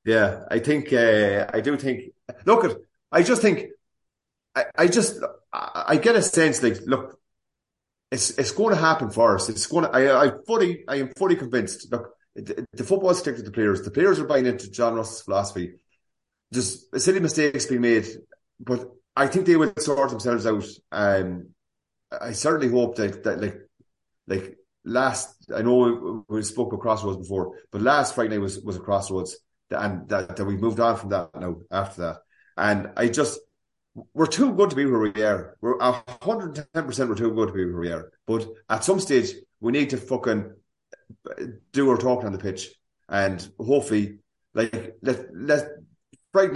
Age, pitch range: 30-49, 100-135 Hz